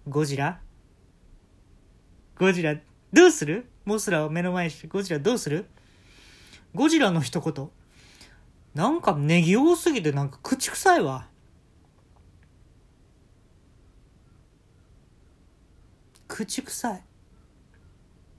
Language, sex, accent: Japanese, male, native